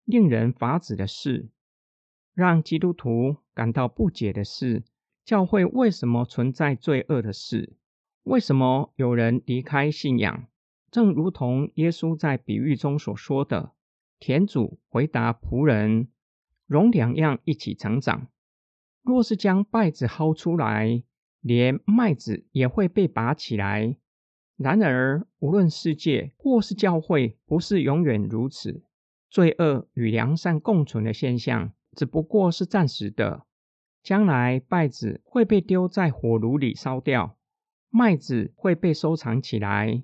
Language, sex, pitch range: Chinese, male, 120-170 Hz